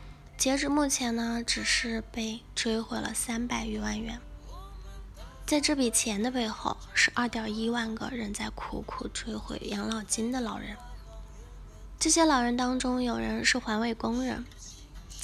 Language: Chinese